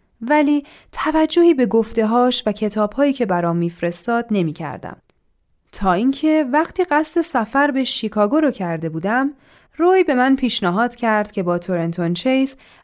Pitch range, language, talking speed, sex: 195-280 Hz, Persian, 135 wpm, female